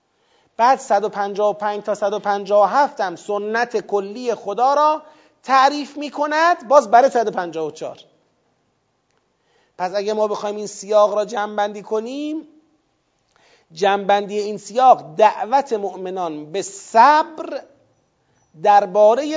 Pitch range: 190-265 Hz